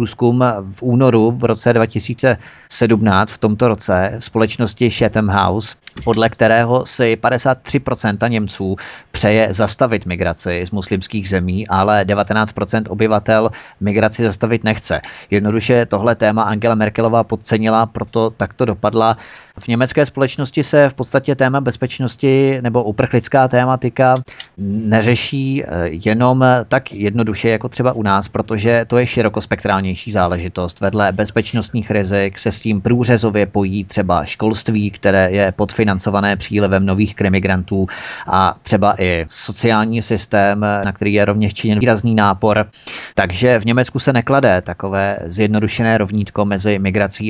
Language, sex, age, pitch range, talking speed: Czech, male, 30-49, 100-120 Hz, 125 wpm